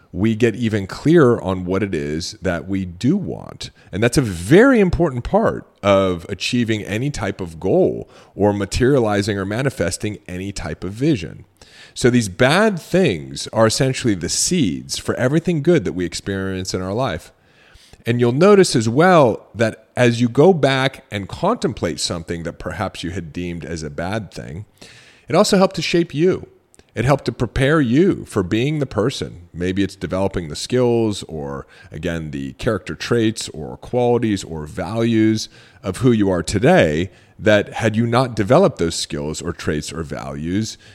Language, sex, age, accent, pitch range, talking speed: English, male, 40-59, American, 90-125 Hz, 170 wpm